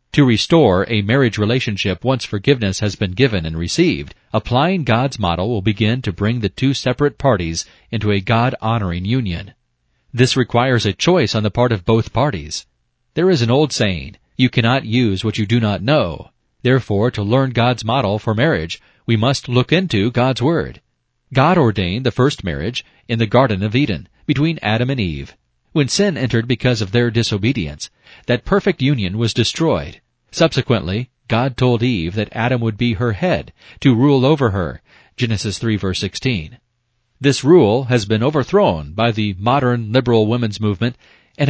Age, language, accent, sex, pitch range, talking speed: 40-59, English, American, male, 105-130 Hz, 170 wpm